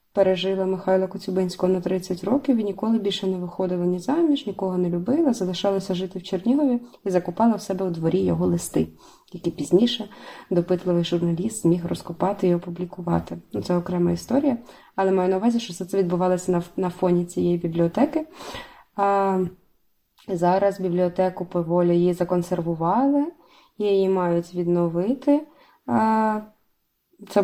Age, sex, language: 20-39, female, Ukrainian